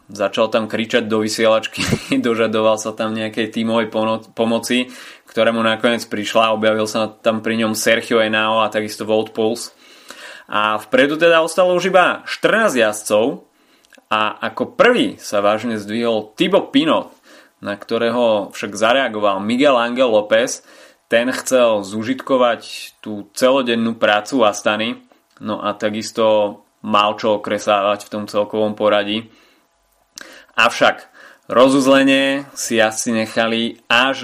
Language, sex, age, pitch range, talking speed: Slovak, male, 20-39, 110-130 Hz, 130 wpm